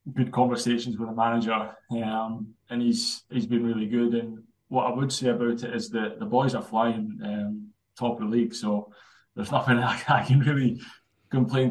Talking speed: 195 wpm